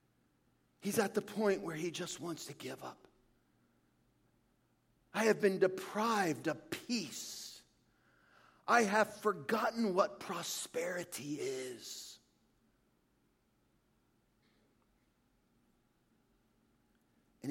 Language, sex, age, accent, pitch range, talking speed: English, male, 50-69, American, 140-210 Hz, 80 wpm